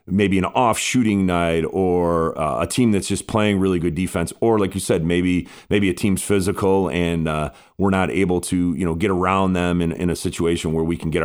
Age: 40-59